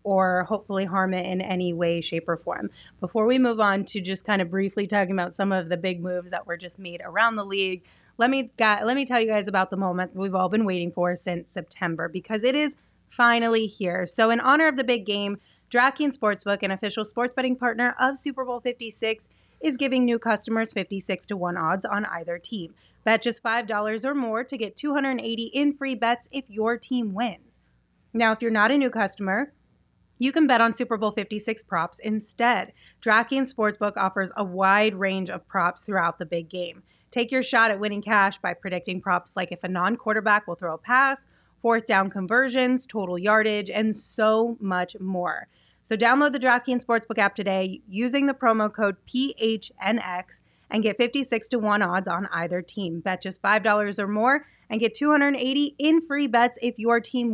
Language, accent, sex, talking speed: English, American, female, 200 wpm